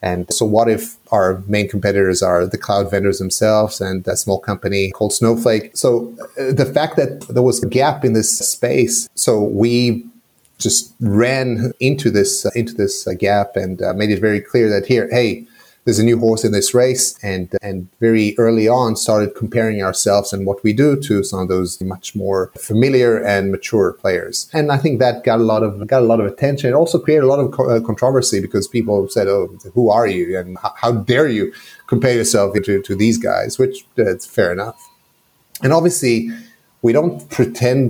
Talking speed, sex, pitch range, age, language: 205 wpm, male, 100-125 Hz, 30-49, English